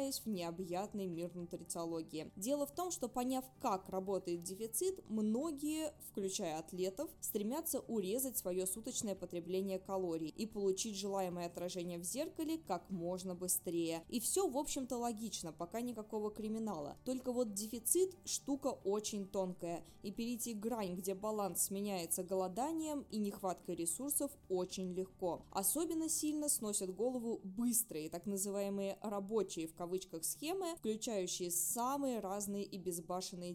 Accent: native